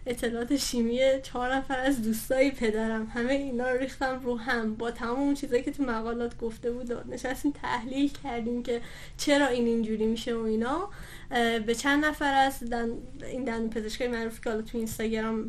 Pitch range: 230-270 Hz